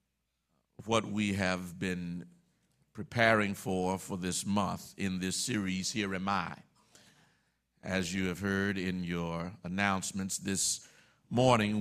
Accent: American